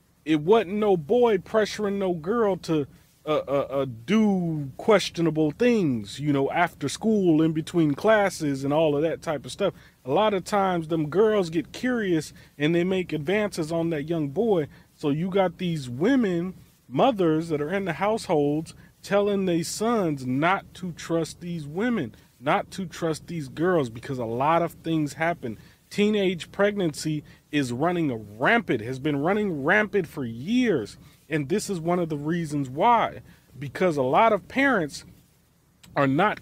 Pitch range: 155-200 Hz